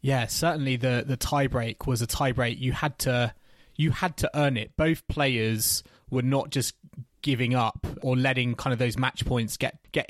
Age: 20-39